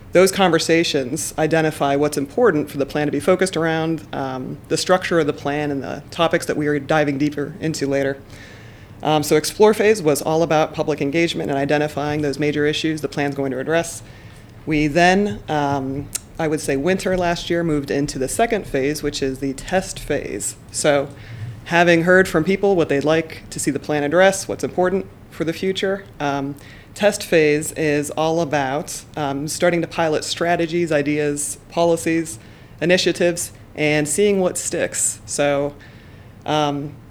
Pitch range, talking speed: 140-165 Hz, 170 wpm